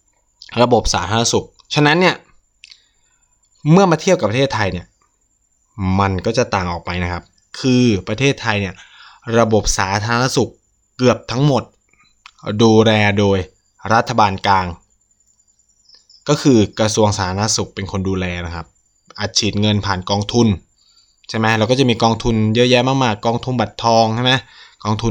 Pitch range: 100-120 Hz